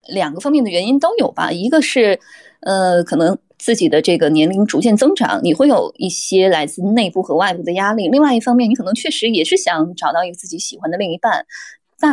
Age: 20-39